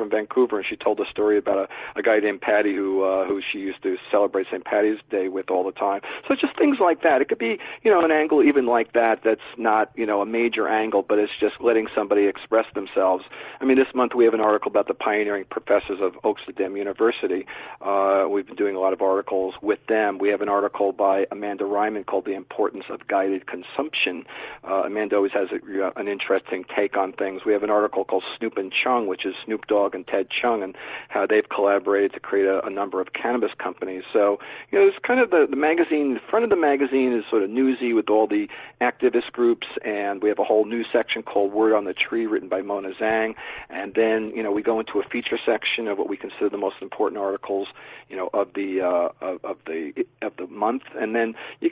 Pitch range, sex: 100-115 Hz, male